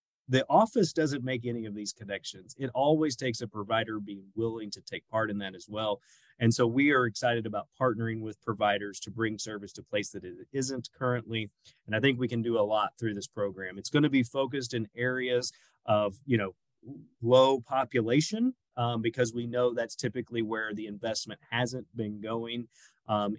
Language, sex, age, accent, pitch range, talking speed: English, male, 30-49, American, 105-130 Hz, 195 wpm